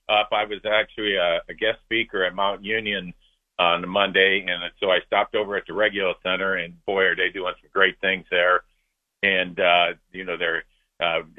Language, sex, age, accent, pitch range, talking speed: English, male, 50-69, American, 90-105 Hz, 205 wpm